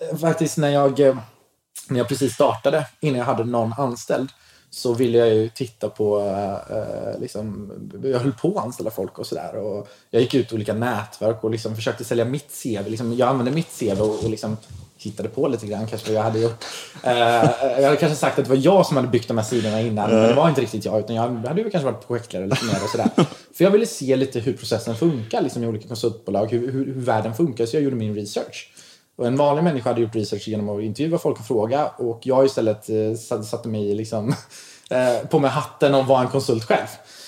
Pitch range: 110-135 Hz